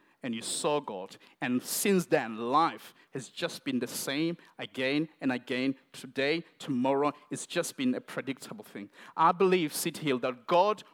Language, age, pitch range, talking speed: English, 50-69, 160-210 Hz, 165 wpm